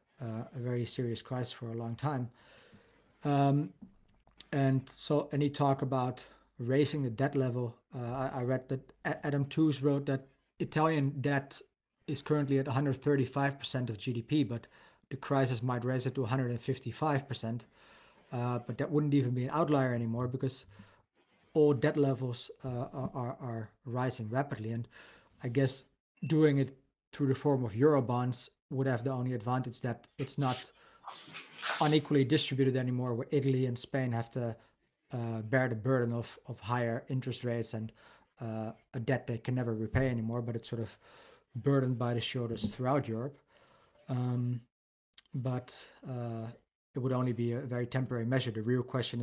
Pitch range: 120-135 Hz